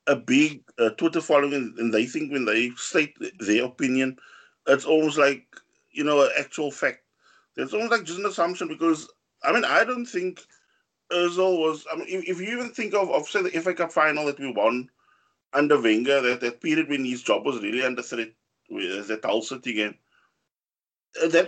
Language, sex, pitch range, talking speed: English, male, 140-210 Hz, 195 wpm